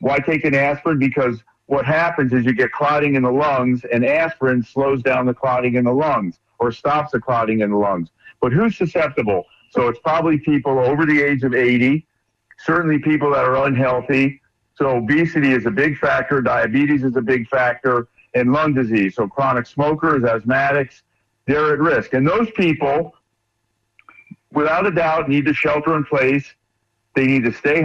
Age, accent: 50-69, American